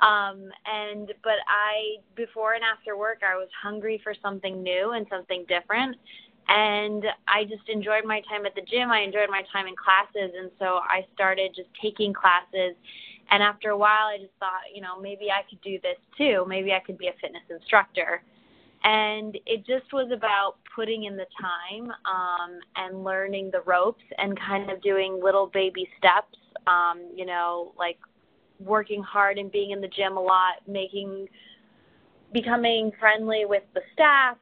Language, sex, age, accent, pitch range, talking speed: English, female, 20-39, American, 190-215 Hz, 175 wpm